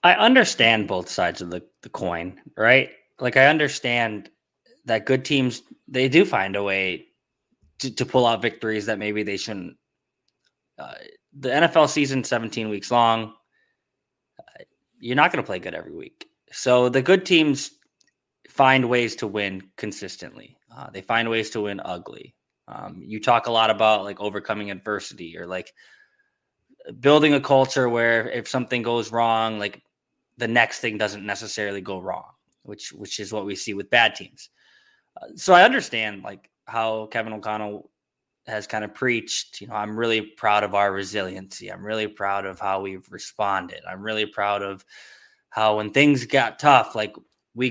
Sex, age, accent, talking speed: male, 20-39, American, 170 wpm